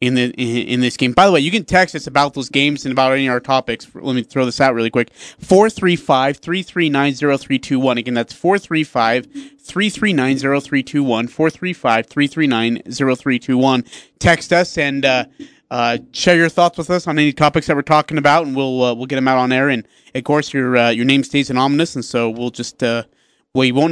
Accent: American